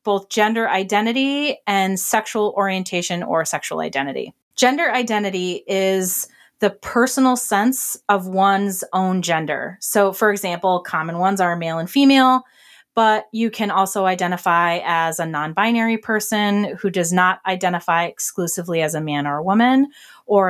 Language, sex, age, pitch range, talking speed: English, female, 30-49, 180-225 Hz, 145 wpm